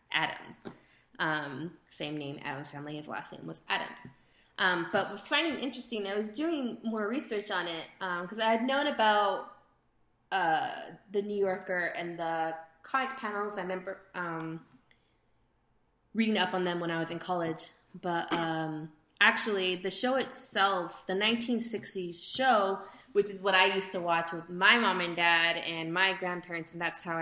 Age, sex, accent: 20-39, female, American